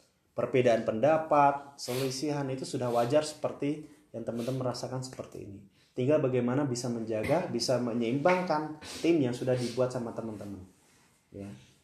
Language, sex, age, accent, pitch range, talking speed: Indonesian, male, 20-39, native, 120-150 Hz, 125 wpm